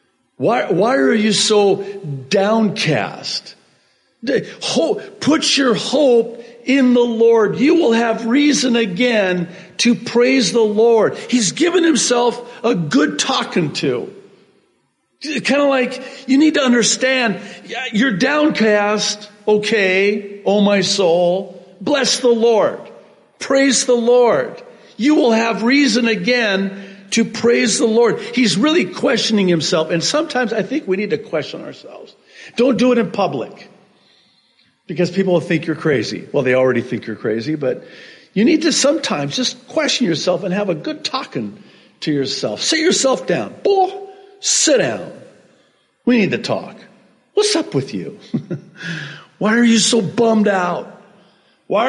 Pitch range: 205-265 Hz